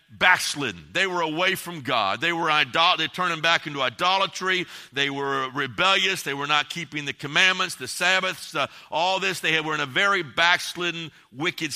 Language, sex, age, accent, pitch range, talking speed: English, male, 50-69, American, 155-195 Hz, 185 wpm